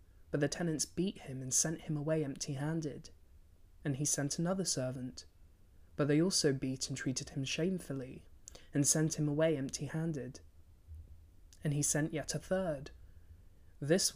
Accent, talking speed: British, 155 wpm